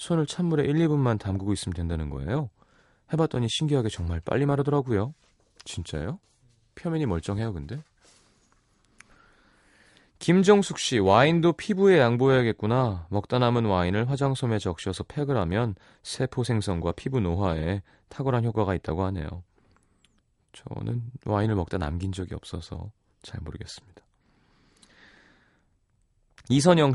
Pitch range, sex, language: 95-135 Hz, male, Korean